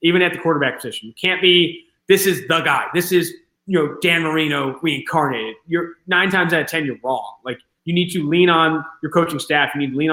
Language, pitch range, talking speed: English, 140-180 Hz, 235 wpm